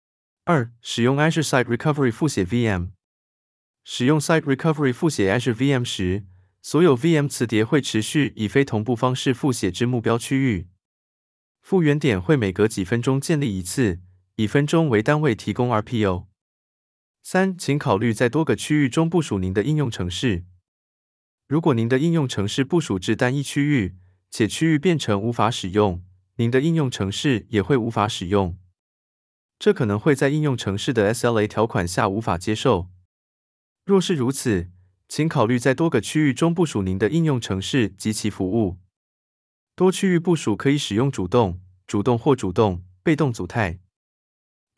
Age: 20-39